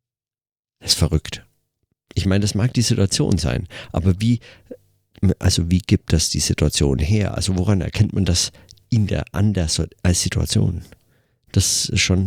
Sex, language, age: male, German, 50-69